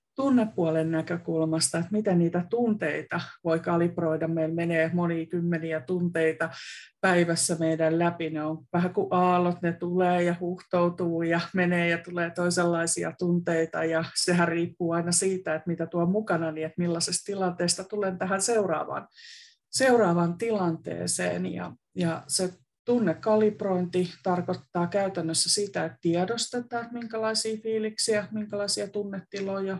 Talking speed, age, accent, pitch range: 125 wpm, 30-49, native, 170-200 Hz